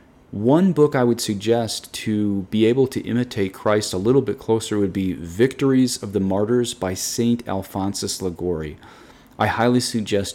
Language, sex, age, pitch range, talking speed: English, male, 30-49, 95-125 Hz, 160 wpm